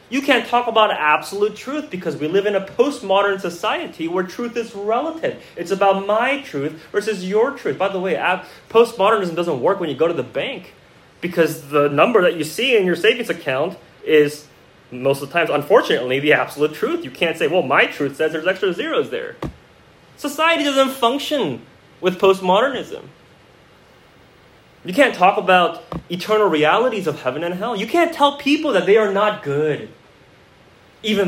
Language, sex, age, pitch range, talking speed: English, male, 30-49, 145-220 Hz, 175 wpm